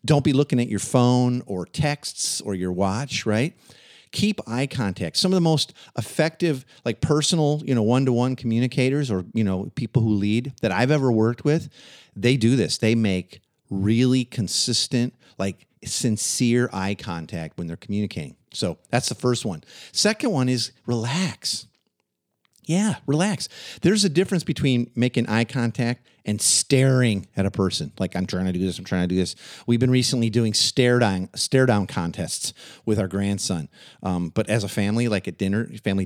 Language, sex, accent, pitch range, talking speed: English, male, American, 100-130 Hz, 175 wpm